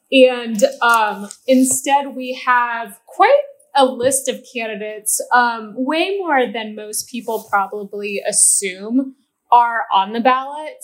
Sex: female